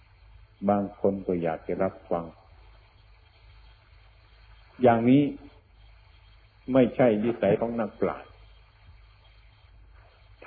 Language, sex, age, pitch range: Thai, male, 60-79, 95-115 Hz